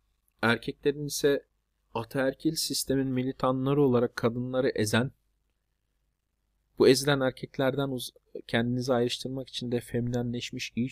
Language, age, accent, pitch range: Turkish, 40-59, native, 100-125 Hz